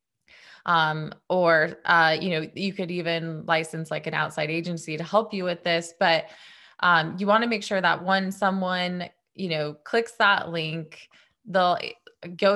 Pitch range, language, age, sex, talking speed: 160-200 Hz, English, 20-39, female, 165 wpm